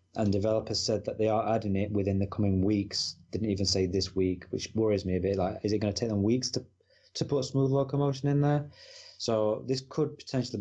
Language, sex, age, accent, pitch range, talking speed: English, male, 20-39, British, 95-115 Hz, 230 wpm